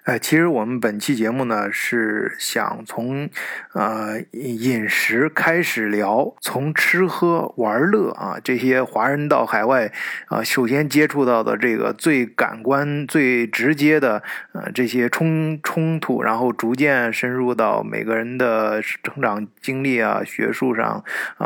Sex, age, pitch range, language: male, 20-39, 115-140 Hz, Chinese